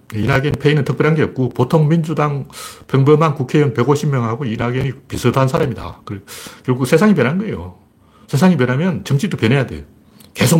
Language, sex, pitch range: Korean, male, 110-160 Hz